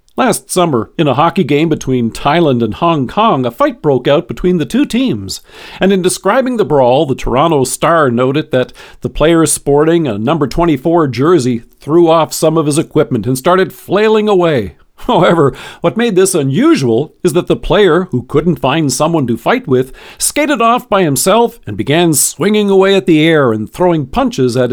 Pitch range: 125-175 Hz